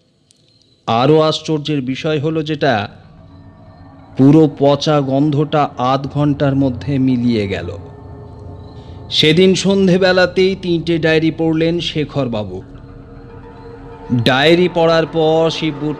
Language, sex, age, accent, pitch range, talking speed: Bengali, male, 30-49, native, 130-170 Hz, 55 wpm